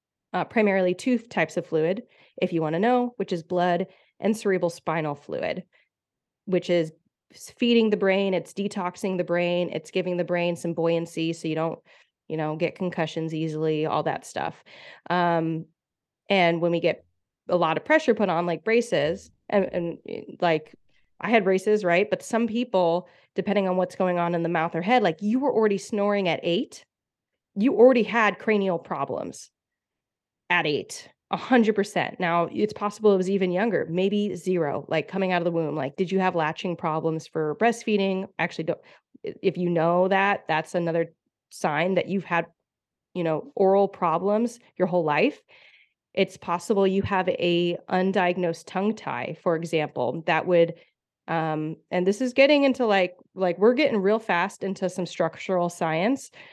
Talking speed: 175 wpm